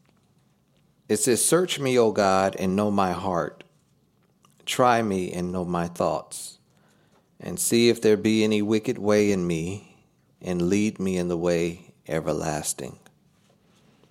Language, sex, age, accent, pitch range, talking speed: English, male, 50-69, American, 90-115 Hz, 140 wpm